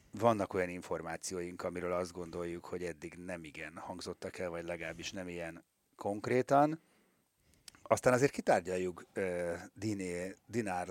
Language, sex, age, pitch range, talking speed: Hungarian, male, 30-49, 90-120 Hz, 125 wpm